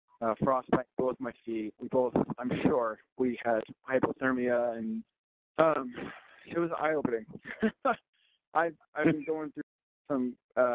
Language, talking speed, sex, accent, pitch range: English, 130 wpm, male, American, 115-140 Hz